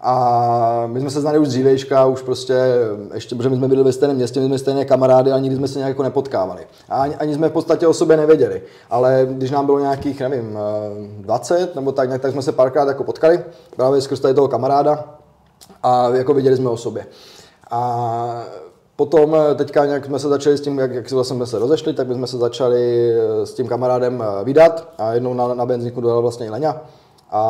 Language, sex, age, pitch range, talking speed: Czech, male, 20-39, 115-135 Hz, 205 wpm